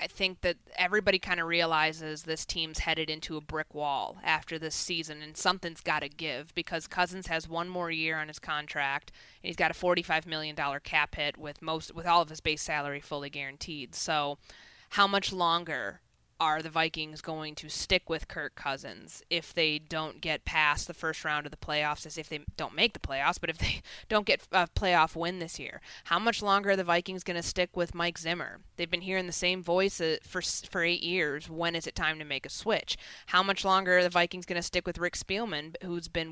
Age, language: 20-39, English